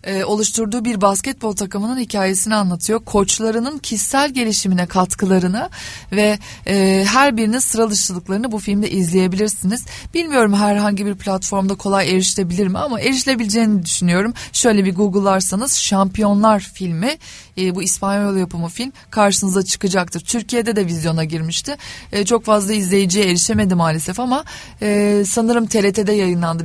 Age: 30-49